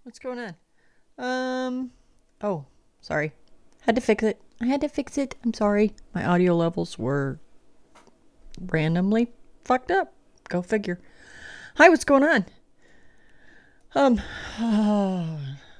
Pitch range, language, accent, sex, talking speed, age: 175-250 Hz, English, American, female, 120 wpm, 30-49